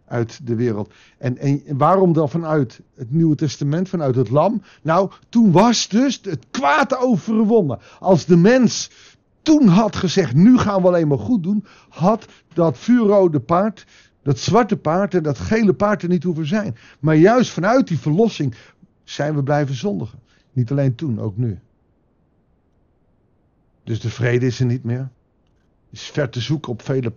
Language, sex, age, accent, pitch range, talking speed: Dutch, male, 50-69, Dutch, 125-185 Hz, 170 wpm